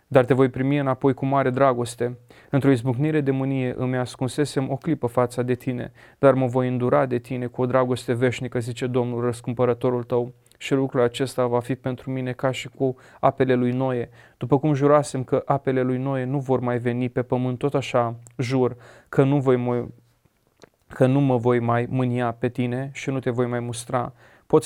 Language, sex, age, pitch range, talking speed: Romanian, male, 30-49, 125-135 Hz, 195 wpm